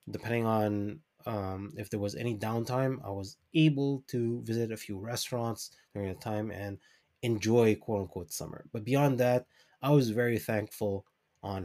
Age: 20-39